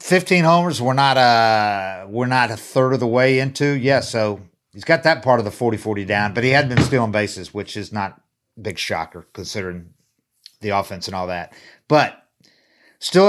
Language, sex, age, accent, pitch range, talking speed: English, male, 50-69, American, 105-140 Hz, 200 wpm